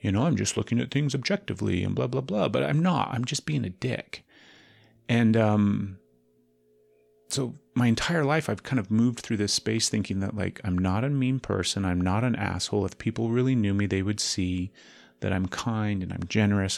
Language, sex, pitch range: English, male, 95-120 Hz